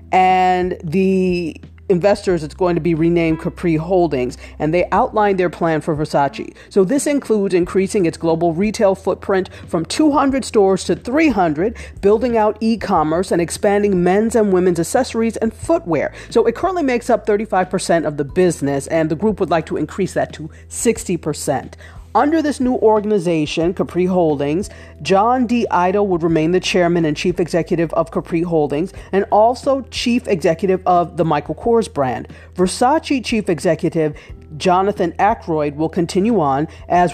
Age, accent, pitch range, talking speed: 40-59, American, 160-205 Hz, 160 wpm